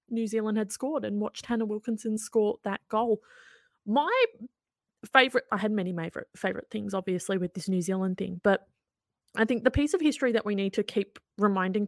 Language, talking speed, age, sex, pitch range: English, 185 wpm, 20-39, female, 190-250 Hz